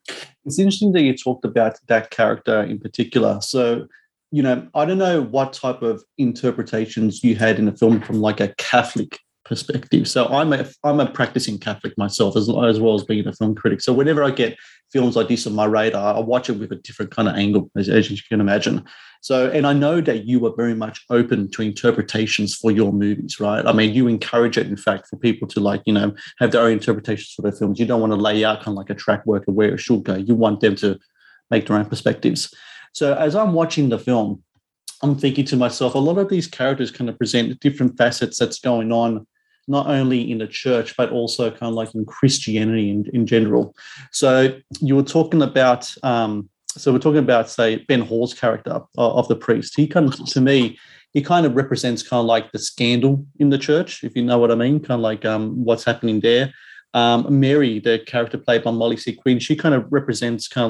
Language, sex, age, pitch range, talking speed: English, male, 30-49, 110-130 Hz, 230 wpm